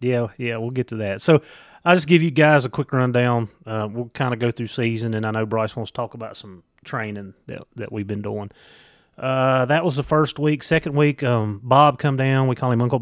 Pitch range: 110-130 Hz